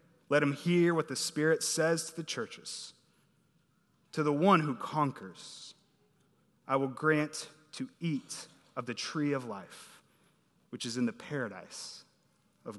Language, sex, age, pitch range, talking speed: English, male, 30-49, 140-185 Hz, 145 wpm